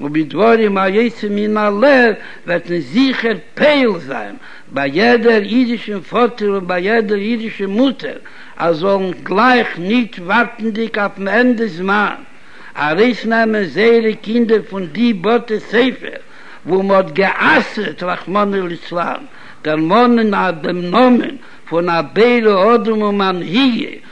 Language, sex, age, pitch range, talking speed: Hebrew, male, 60-79, 190-235 Hz, 95 wpm